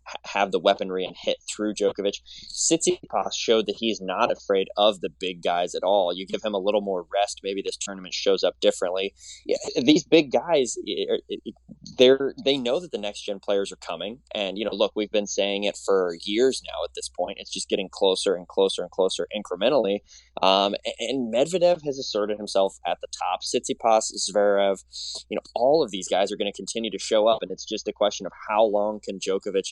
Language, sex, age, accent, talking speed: English, male, 20-39, American, 205 wpm